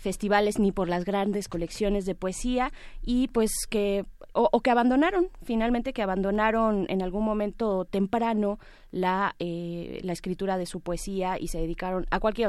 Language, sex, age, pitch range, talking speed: Spanish, female, 20-39, 185-240 Hz, 165 wpm